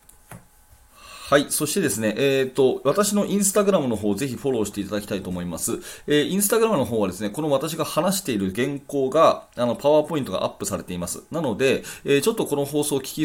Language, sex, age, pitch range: Japanese, male, 30-49, 100-140 Hz